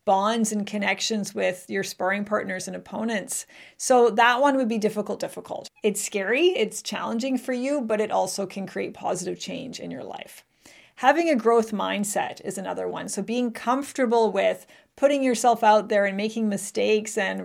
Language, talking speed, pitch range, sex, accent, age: English, 175 wpm, 210-255 Hz, female, American, 40-59